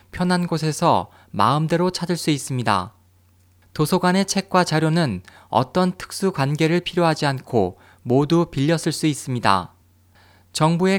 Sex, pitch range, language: male, 100-165 Hz, Korean